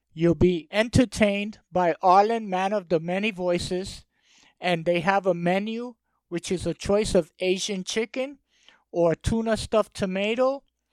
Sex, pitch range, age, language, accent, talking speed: male, 175-215 Hz, 50-69, English, American, 145 wpm